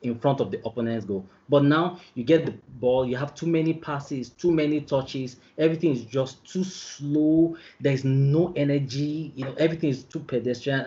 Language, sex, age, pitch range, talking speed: English, male, 20-39, 115-150 Hz, 190 wpm